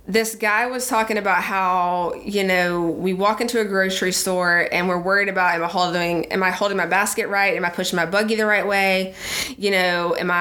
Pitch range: 190-255 Hz